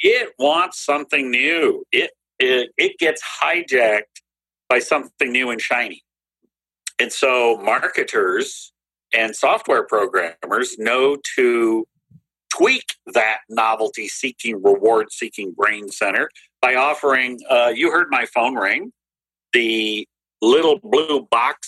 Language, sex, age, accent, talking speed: English, male, 50-69, American, 110 wpm